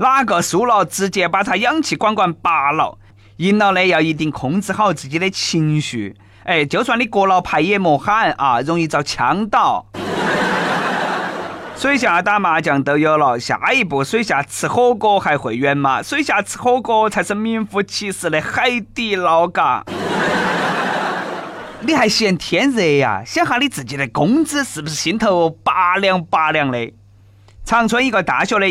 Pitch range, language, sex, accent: 150-230 Hz, Chinese, male, native